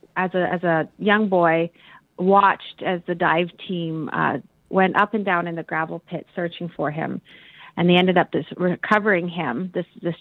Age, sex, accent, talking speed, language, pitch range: 30-49, female, American, 190 wpm, English, 170-200 Hz